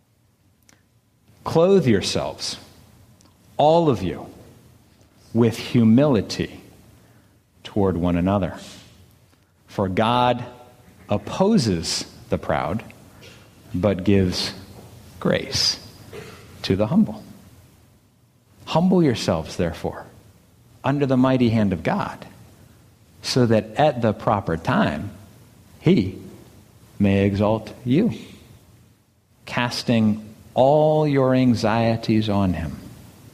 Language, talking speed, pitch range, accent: English, 85 wpm, 100-125 Hz, American